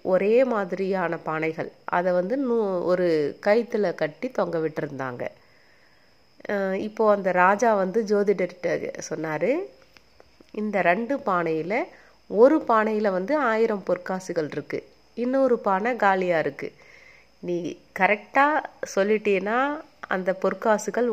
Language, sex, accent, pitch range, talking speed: Tamil, female, native, 170-225 Hz, 95 wpm